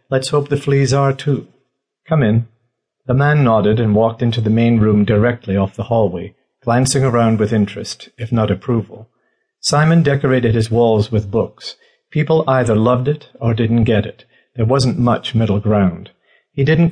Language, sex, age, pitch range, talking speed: English, male, 50-69, 105-130 Hz, 175 wpm